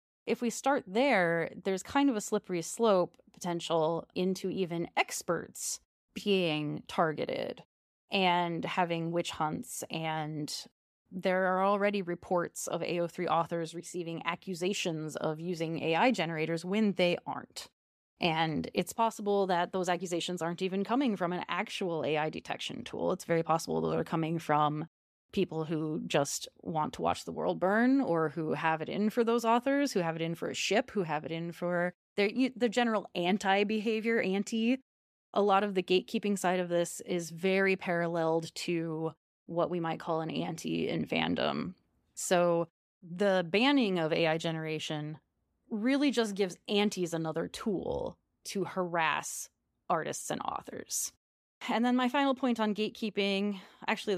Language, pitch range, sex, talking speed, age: English, 165-210 Hz, female, 155 wpm, 20-39